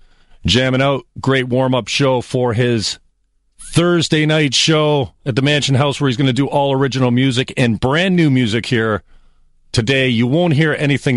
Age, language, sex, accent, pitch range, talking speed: 40-59, English, male, American, 105-145 Hz, 170 wpm